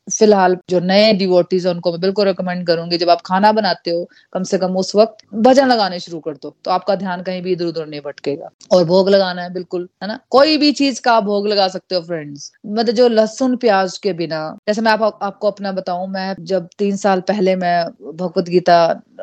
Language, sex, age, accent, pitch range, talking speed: Hindi, female, 30-49, native, 180-215 Hz, 215 wpm